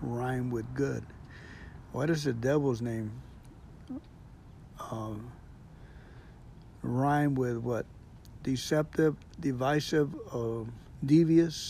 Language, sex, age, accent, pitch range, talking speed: English, male, 60-79, American, 125-160 Hz, 80 wpm